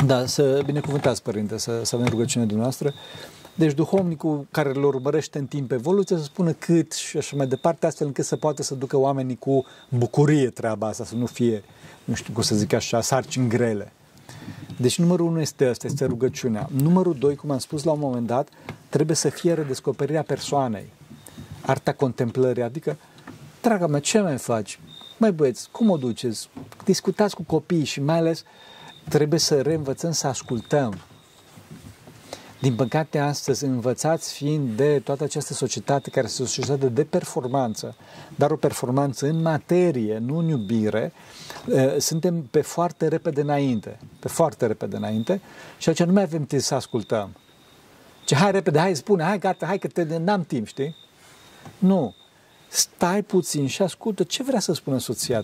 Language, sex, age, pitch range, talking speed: Romanian, male, 40-59, 130-165 Hz, 170 wpm